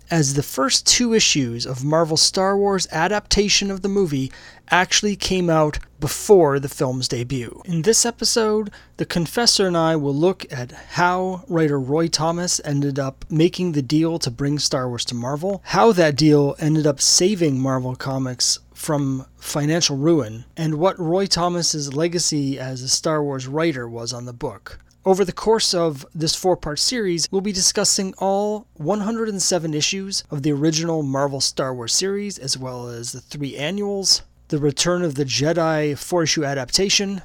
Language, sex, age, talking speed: English, male, 30-49, 165 wpm